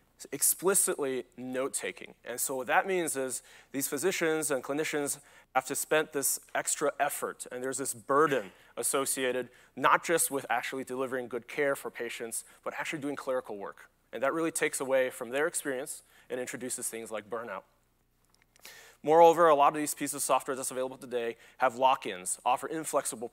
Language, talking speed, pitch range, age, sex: English, 165 wpm, 125-145 Hz, 30-49, male